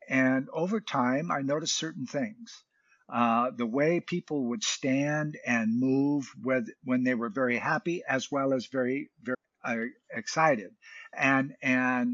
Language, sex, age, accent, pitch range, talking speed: English, male, 50-69, American, 130-185 Hz, 150 wpm